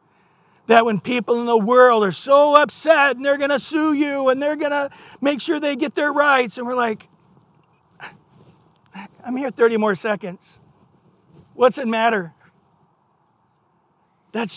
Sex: male